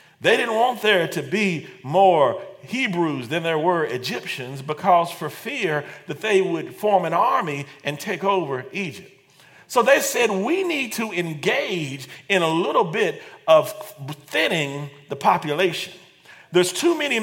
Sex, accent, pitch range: male, American, 150-200 Hz